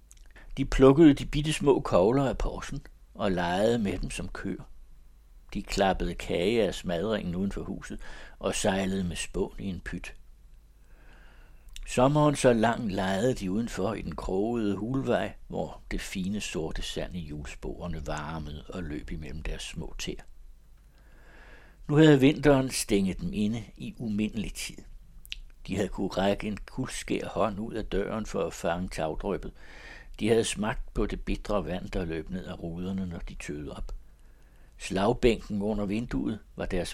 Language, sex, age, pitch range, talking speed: Danish, male, 60-79, 90-110 Hz, 155 wpm